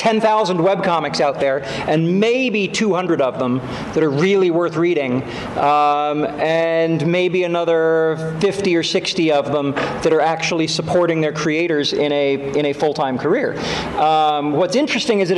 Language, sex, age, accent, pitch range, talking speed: English, male, 40-59, American, 155-195 Hz, 170 wpm